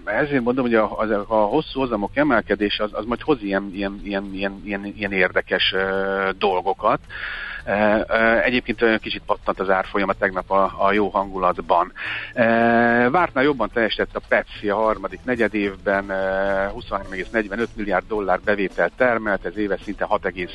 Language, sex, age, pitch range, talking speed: Hungarian, male, 50-69, 95-110 Hz, 150 wpm